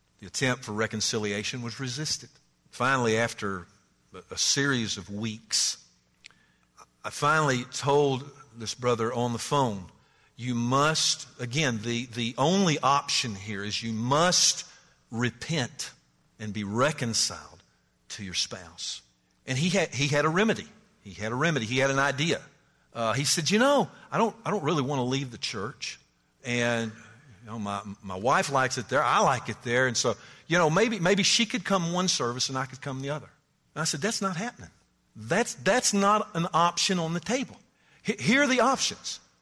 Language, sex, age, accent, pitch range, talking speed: English, male, 50-69, American, 115-190 Hz, 175 wpm